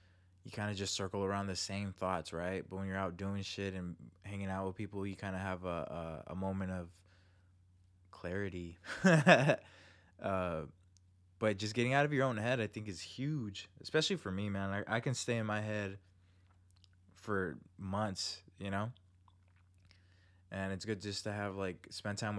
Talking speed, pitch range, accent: 180 wpm, 95-115 Hz, American